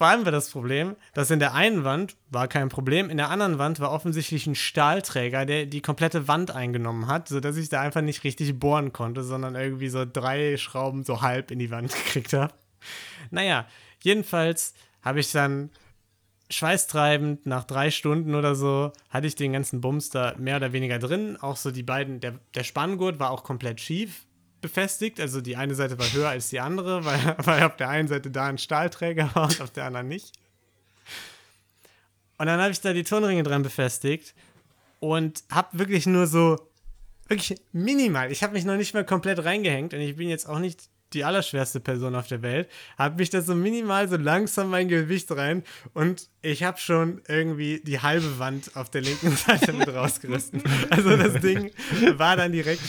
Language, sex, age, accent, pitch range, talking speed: German, male, 30-49, German, 130-170 Hz, 195 wpm